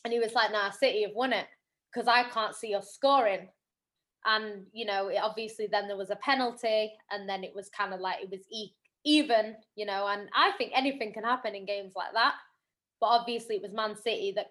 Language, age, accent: English, 20-39, British